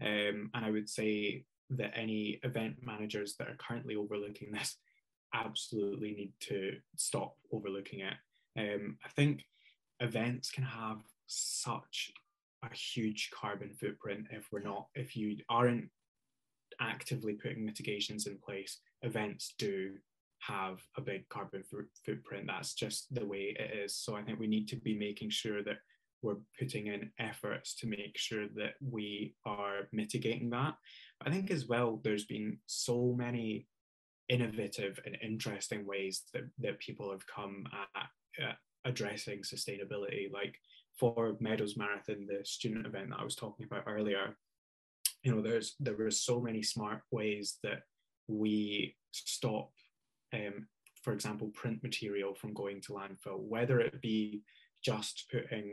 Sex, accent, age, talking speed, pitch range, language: male, British, 20-39, 150 wpm, 105-120 Hz, English